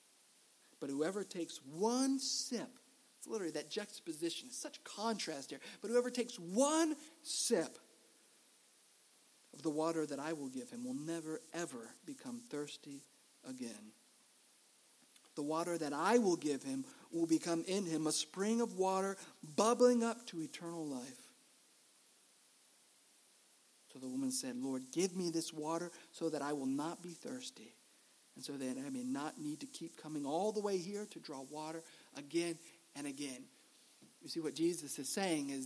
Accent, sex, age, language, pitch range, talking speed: American, male, 50-69, English, 155-240 Hz, 160 wpm